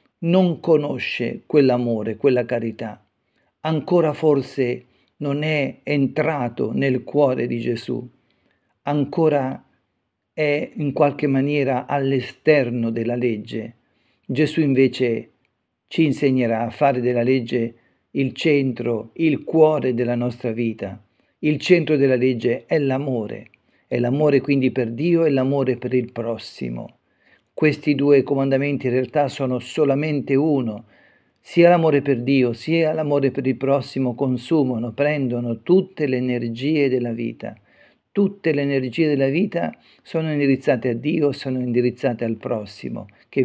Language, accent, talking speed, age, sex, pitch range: Italian, native, 125 wpm, 50-69, male, 120-145 Hz